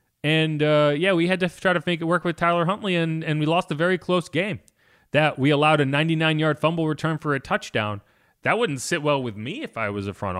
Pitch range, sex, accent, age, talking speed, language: 125-170 Hz, male, American, 30-49, 250 wpm, English